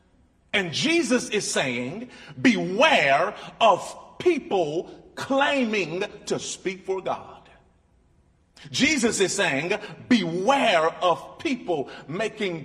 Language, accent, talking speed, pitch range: English, American, 90 wpm, 135-210 Hz